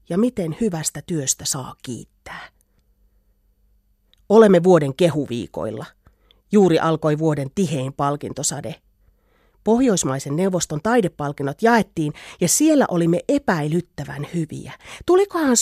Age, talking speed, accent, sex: 30-49, 90 wpm, native, female